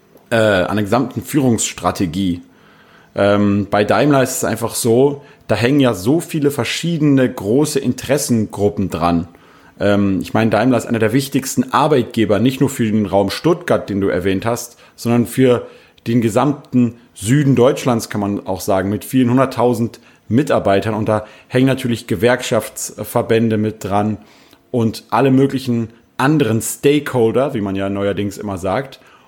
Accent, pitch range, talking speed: German, 105-135 Hz, 145 wpm